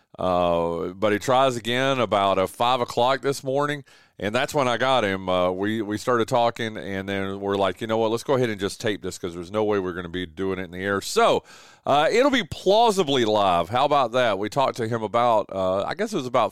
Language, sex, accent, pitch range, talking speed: English, male, American, 100-140 Hz, 250 wpm